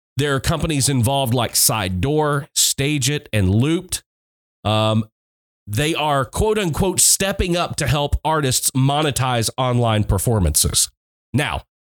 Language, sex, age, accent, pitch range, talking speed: English, male, 30-49, American, 110-150 Hz, 125 wpm